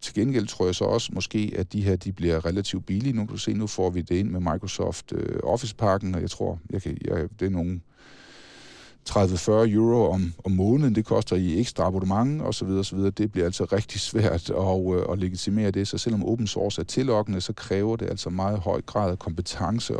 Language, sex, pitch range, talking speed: Danish, male, 90-105 Hz, 190 wpm